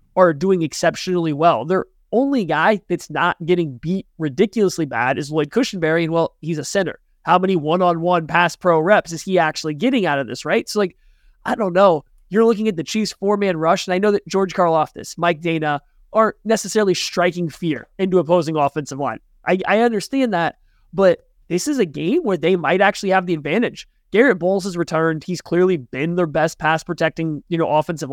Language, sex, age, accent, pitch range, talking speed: English, male, 20-39, American, 160-195 Hz, 200 wpm